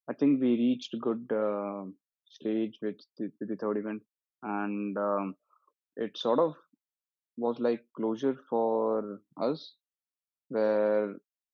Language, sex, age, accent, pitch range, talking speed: English, male, 20-39, Indian, 100-115 Hz, 125 wpm